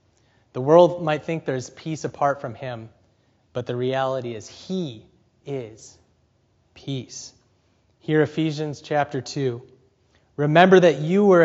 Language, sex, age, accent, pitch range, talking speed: English, male, 30-49, American, 120-170 Hz, 125 wpm